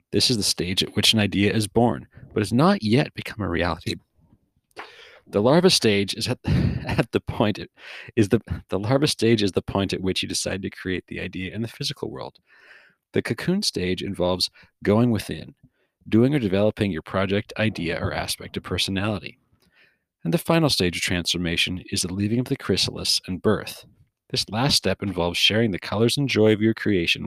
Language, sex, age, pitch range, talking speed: English, male, 40-59, 90-115 Hz, 175 wpm